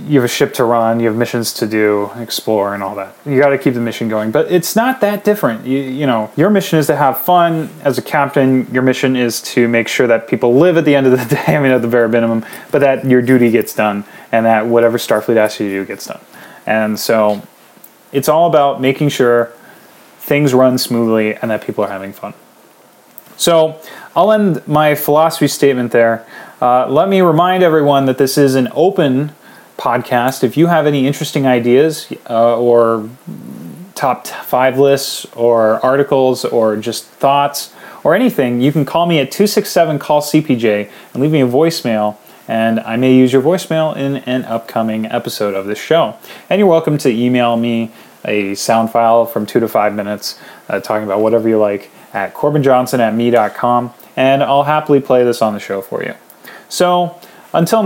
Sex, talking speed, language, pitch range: male, 195 wpm, English, 115-150 Hz